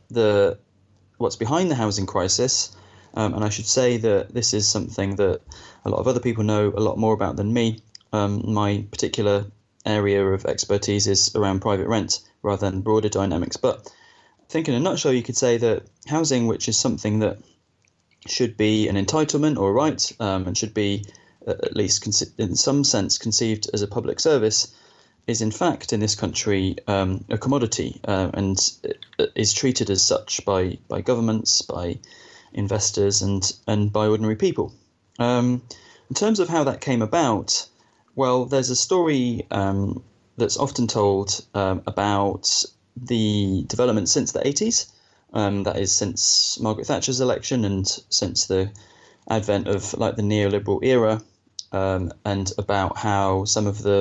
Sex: male